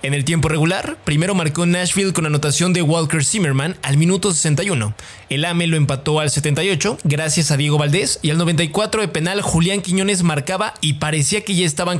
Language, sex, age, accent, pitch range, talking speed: English, male, 20-39, Mexican, 145-190 Hz, 190 wpm